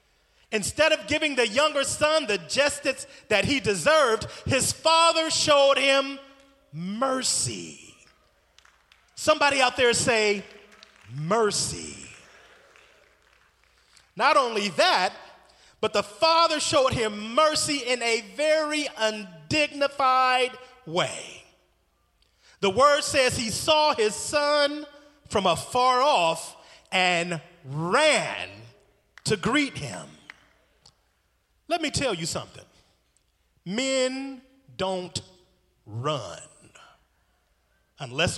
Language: English